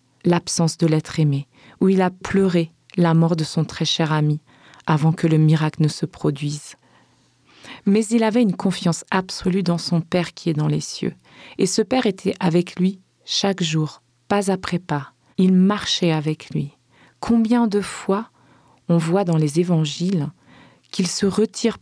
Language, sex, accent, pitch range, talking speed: French, female, French, 155-200 Hz, 170 wpm